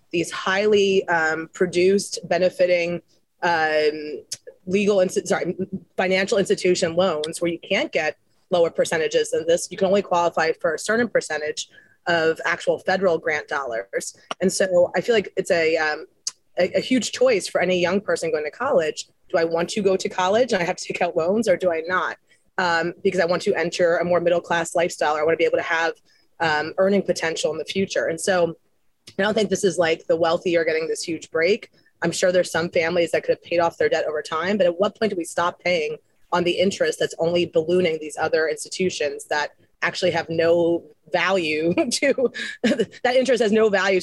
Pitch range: 170-210 Hz